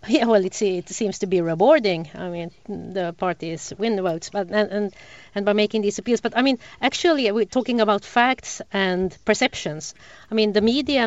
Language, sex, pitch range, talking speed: English, female, 180-240 Hz, 200 wpm